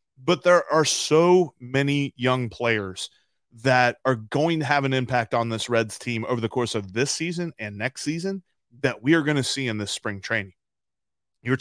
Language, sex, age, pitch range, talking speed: English, male, 30-49, 120-160 Hz, 195 wpm